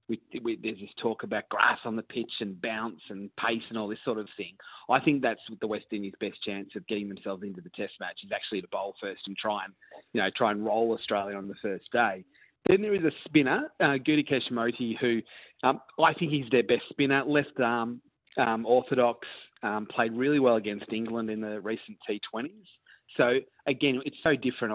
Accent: Australian